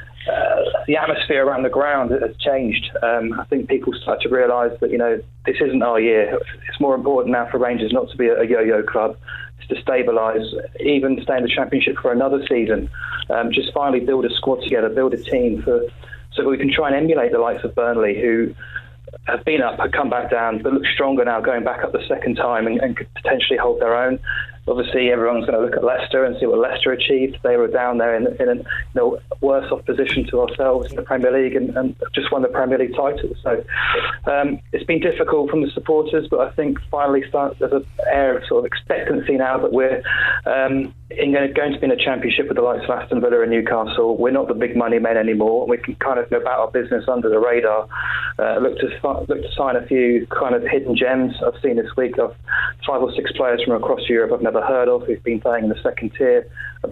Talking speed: 235 wpm